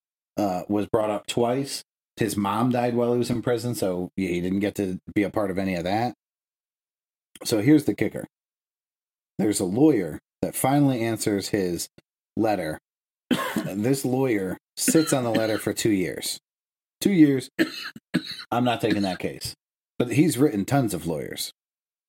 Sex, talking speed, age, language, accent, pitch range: male, 165 wpm, 30-49, English, American, 100-125 Hz